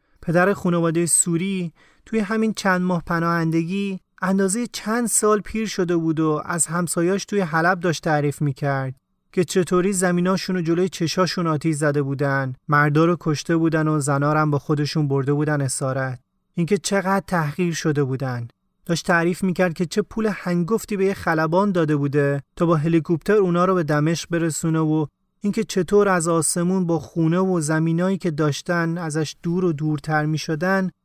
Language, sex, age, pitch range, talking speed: Persian, male, 30-49, 155-190 Hz, 155 wpm